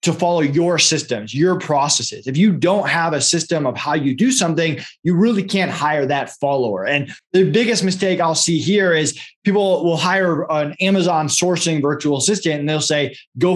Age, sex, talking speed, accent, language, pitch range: 20-39, male, 190 wpm, American, English, 150-185 Hz